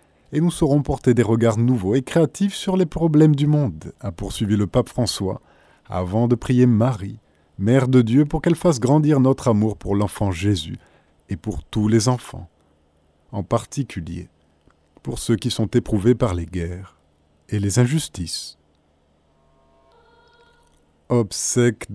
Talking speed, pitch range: 150 wpm, 100-130 Hz